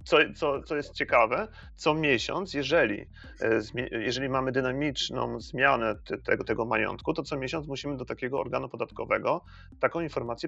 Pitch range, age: 125-150 Hz, 30-49